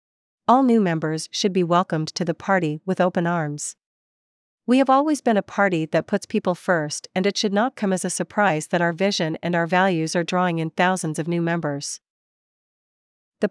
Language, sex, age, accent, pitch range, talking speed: English, female, 40-59, American, 170-205 Hz, 195 wpm